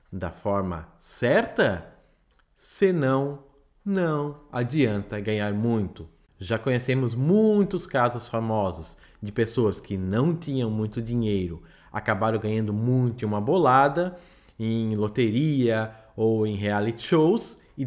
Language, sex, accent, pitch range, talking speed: Portuguese, male, Brazilian, 105-140 Hz, 110 wpm